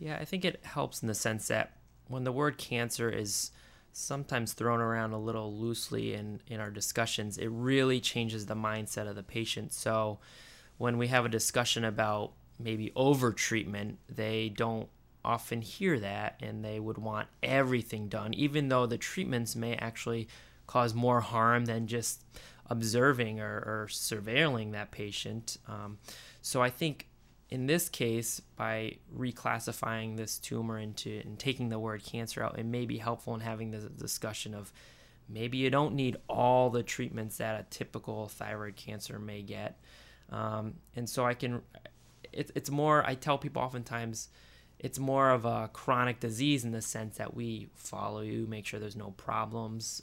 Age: 20-39